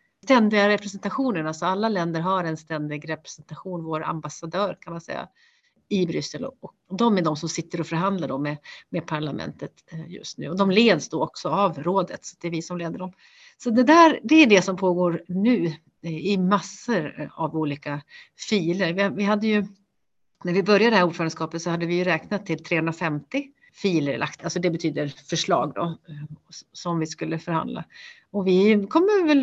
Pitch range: 165-220 Hz